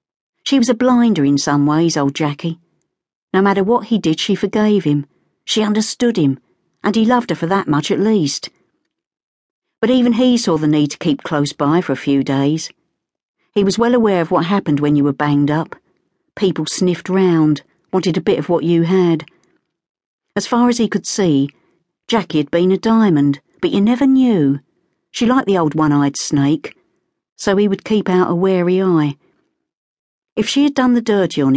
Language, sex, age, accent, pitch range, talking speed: English, female, 50-69, British, 155-225 Hz, 190 wpm